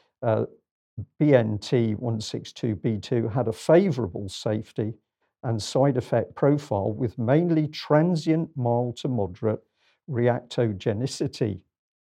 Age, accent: 50-69, British